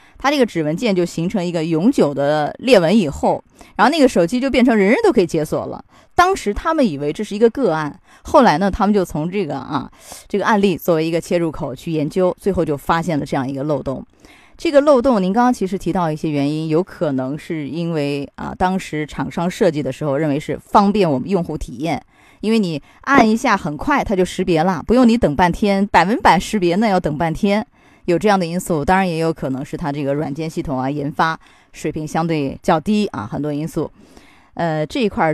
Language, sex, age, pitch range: Chinese, female, 20-39, 150-205 Hz